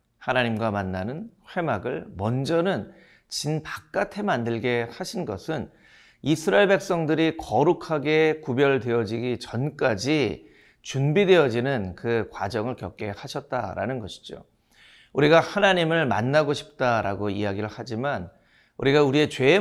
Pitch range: 105-155 Hz